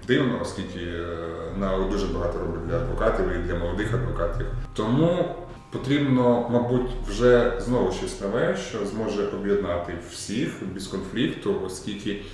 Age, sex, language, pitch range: 20-39, male, Ukrainian, 95-110 Hz